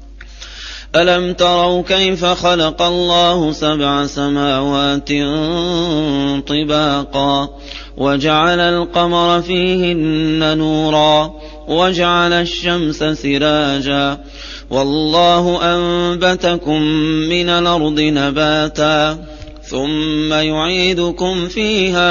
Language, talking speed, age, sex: Arabic, 60 wpm, 30-49, male